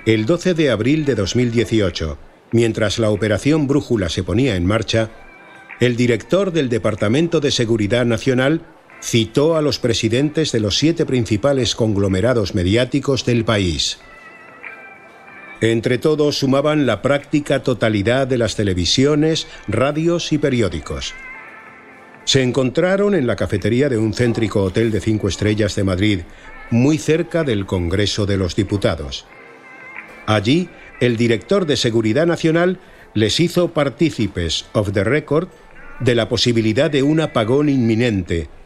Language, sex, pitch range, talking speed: Spanish, male, 105-145 Hz, 130 wpm